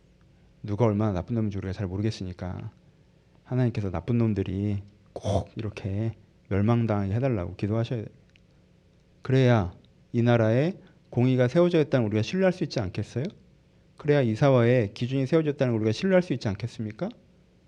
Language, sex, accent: Korean, male, native